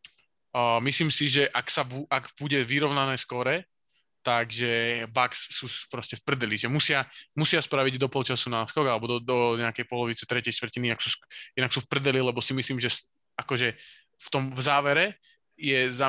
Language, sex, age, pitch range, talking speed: Slovak, male, 20-39, 120-140 Hz, 180 wpm